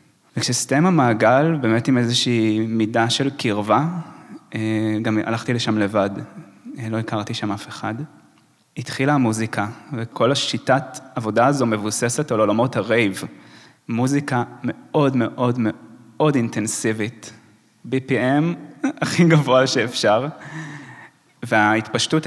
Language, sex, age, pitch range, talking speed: Hebrew, male, 20-39, 110-130 Hz, 100 wpm